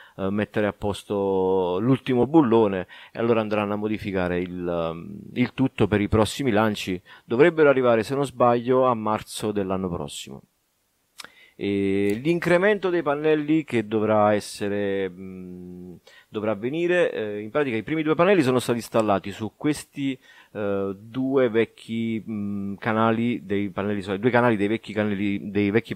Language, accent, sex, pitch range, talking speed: Italian, native, male, 100-125 Hz, 135 wpm